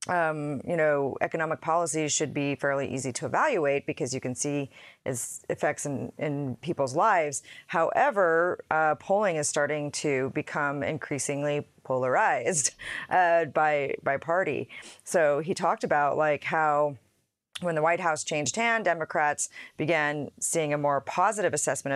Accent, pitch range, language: American, 140-165 Hz, English